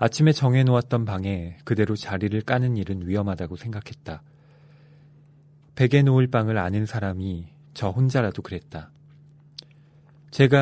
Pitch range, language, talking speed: 100-145 Hz, English, 100 wpm